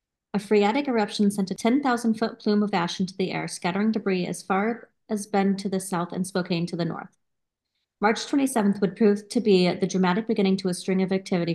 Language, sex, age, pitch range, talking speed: English, female, 30-49, 180-215 Hz, 210 wpm